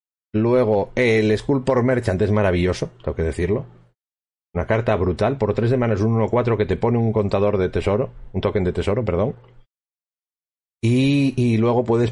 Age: 40-59